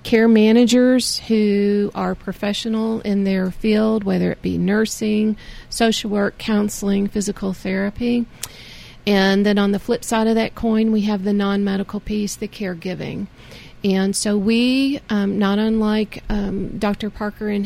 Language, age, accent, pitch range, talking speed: English, 40-59, American, 200-225 Hz, 145 wpm